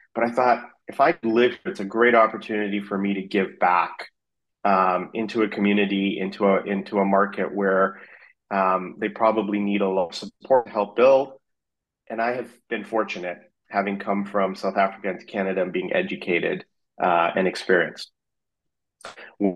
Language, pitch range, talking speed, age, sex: English, 100-115 Hz, 170 wpm, 30-49, male